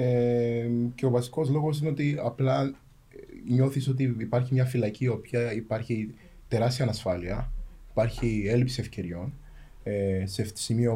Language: Greek